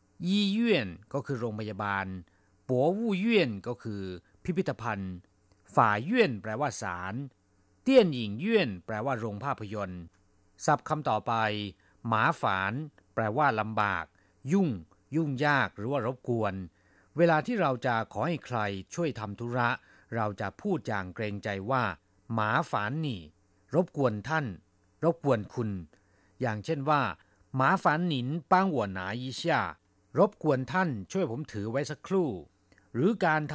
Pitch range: 100-150 Hz